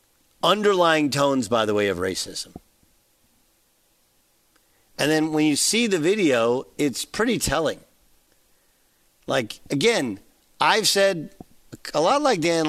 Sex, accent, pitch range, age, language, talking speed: male, American, 135-180 Hz, 50-69, English, 120 wpm